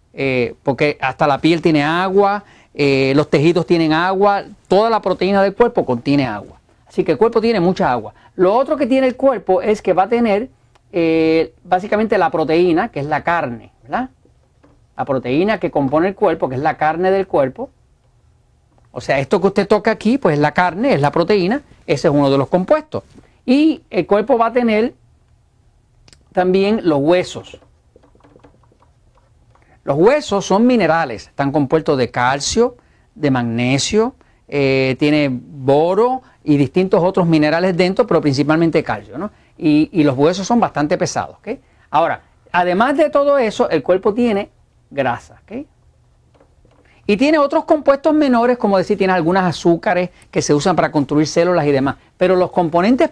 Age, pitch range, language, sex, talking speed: 40-59, 150-220 Hz, English, male, 165 wpm